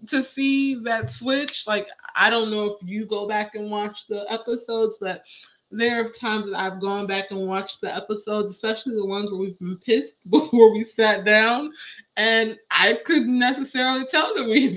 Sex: female